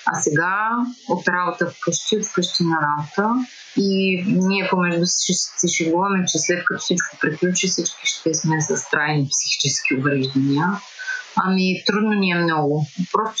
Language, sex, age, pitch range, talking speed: Bulgarian, female, 30-49, 165-215 Hz, 150 wpm